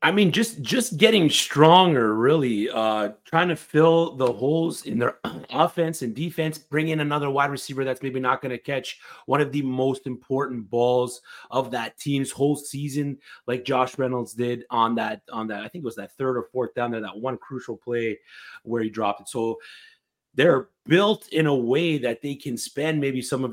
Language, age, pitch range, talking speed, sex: English, 30-49, 120-155 Hz, 200 wpm, male